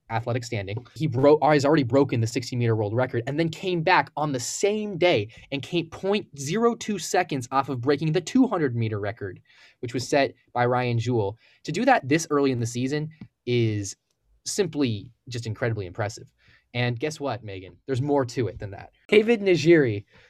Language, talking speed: English, 185 wpm